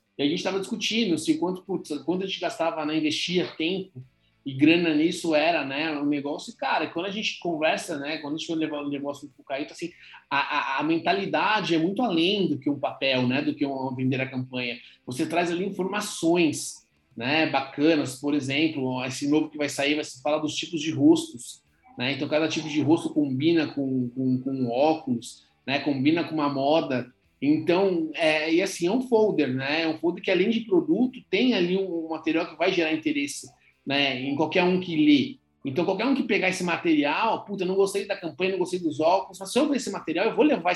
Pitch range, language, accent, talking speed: 145-195 Hz, Portuguese, Brazilian, 220 wpm